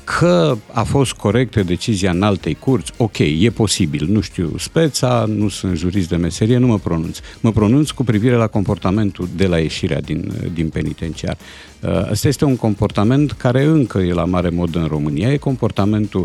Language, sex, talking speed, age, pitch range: Romanian, male, 180 wpm, 50-69, 90-135 Hz